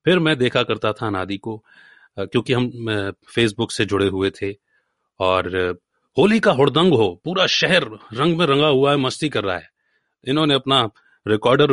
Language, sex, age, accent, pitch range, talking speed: Hindi, male, 30-49, native, 115-160 Hz, 170 wpm